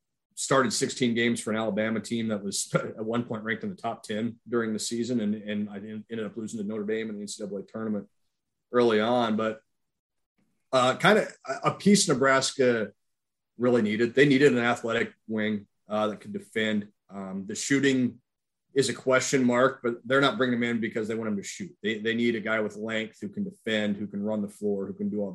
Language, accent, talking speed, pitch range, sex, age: English, American, 220 wpm, 105-125 Hz, male, 30-49